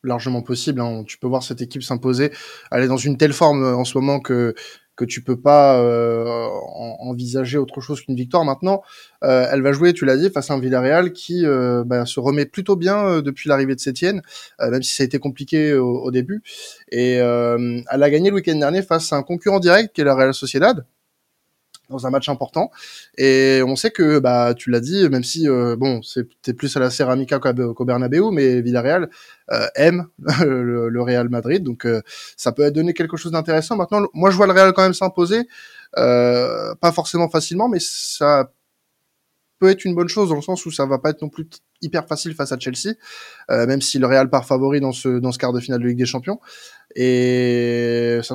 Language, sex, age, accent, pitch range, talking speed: French, male, 20-39, French, 125-165 Hz, 215 wpm